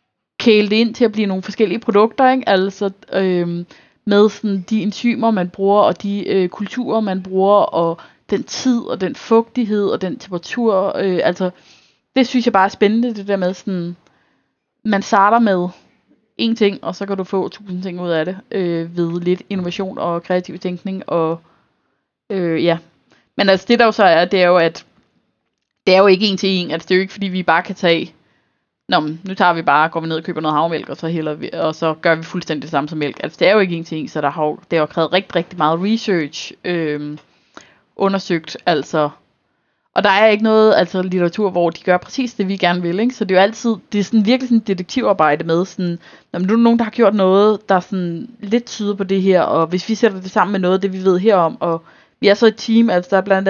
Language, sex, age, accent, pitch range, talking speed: Danish, female, 20-39, native, 170-210 Hz, 235 wpm